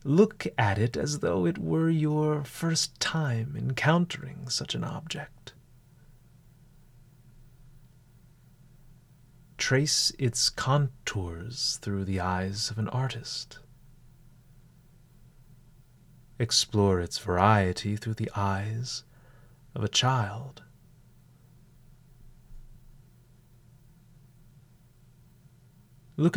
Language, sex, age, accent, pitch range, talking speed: English, male, 30-49, American, 120-140 Hz, 75 wpm